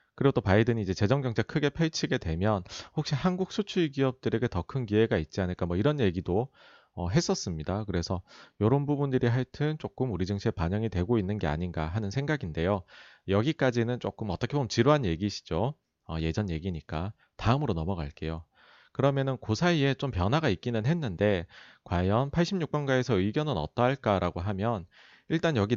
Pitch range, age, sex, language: 95-135 Hz, 30-49, male, Korean